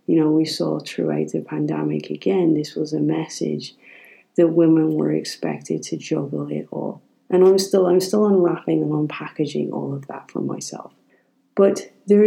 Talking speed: 170 wpm